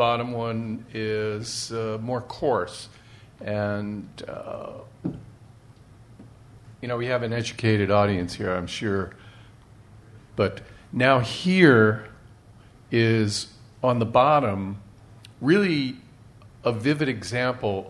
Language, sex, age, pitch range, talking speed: English, male, 50-69, 105-120 Hz, 95 wpm